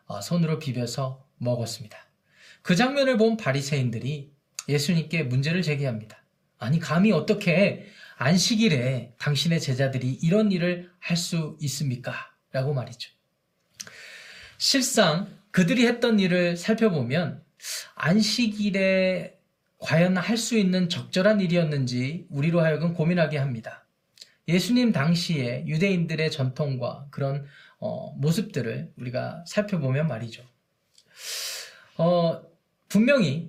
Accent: native